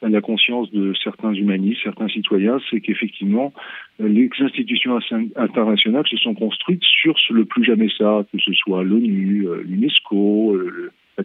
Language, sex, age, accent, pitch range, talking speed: French, male, 40-59, French, 100-170 Hz, 140 wpm